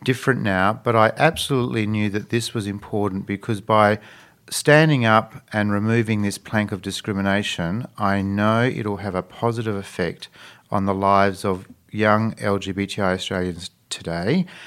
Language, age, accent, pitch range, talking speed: English, 40-59, Australian, 100-125 Hz, 145 wpm